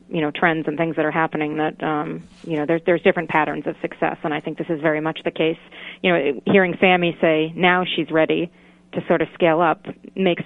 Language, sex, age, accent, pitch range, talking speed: English, female, 30-49, American, 155-180 Hz, 235 wpm